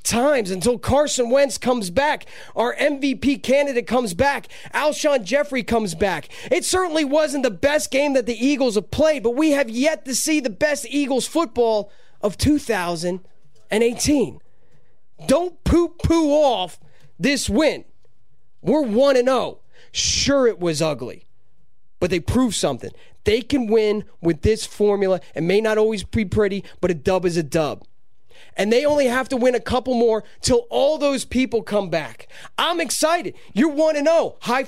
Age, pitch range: 20-39, 210-280 Hz